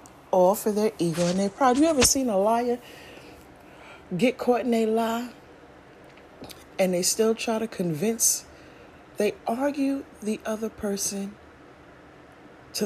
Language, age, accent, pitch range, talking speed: English, 40-59, American, 160-220 Hz, 135 wpm